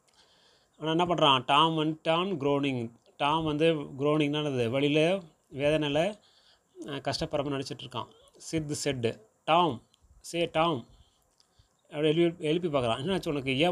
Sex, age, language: male, 30-49, Tamil